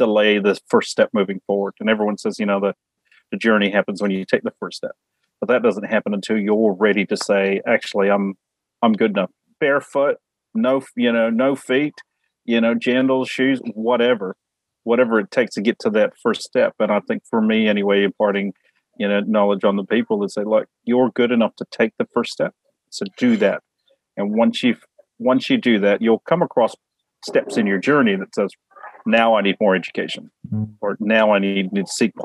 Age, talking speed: 40-59, 205 wpm